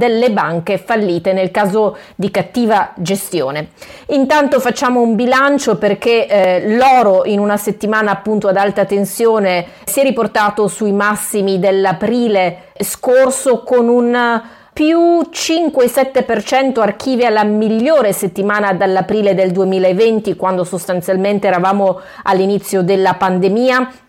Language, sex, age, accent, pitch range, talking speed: Italian, female, 30-49, native, 195-235 Hz, 115 wpm